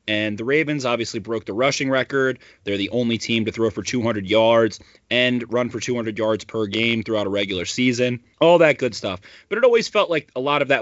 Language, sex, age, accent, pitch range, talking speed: English, male, 30-49, American, 105-130 Hz, 225 wpm